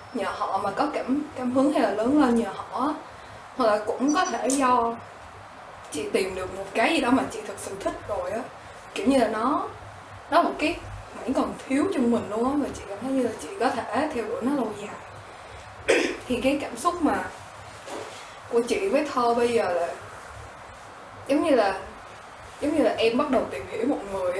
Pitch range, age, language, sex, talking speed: 220-285 Hz, 10-29, Vietnamese, female, 210 wpm